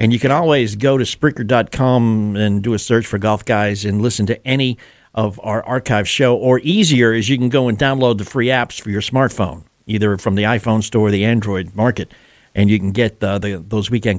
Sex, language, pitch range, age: male, English, 100-130 Hz, 50-69